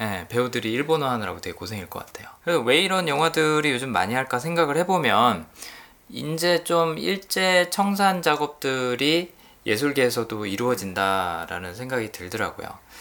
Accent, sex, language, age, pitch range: native, male, Korean, 20-39, 100-155 Hz